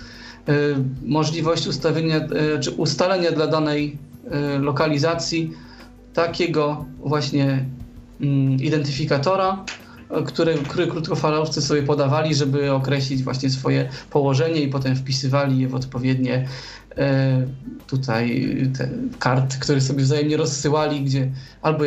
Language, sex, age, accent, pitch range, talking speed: Polish, male, 20-39, native, 135-165 Hz, 95 wpm